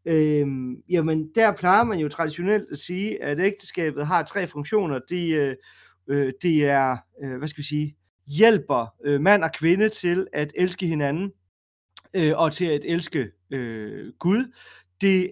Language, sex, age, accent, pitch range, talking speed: Danish, male, 30-49, native, 130-175 Hz, 155 wpm